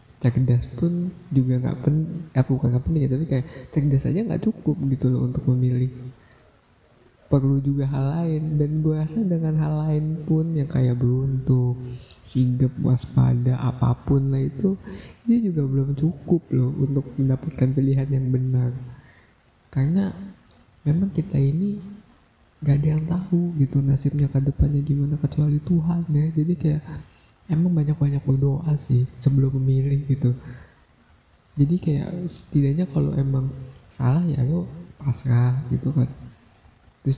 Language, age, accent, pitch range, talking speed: Indonesian, 20-39, native, 125-150 Hz, 140 wpm